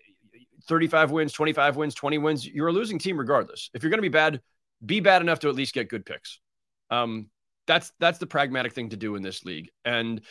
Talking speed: 220 wpm